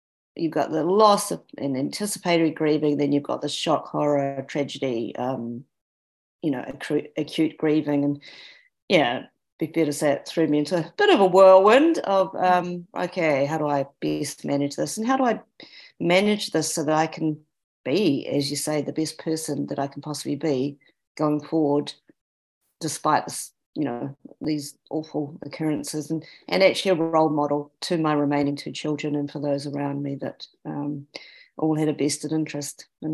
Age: 40-59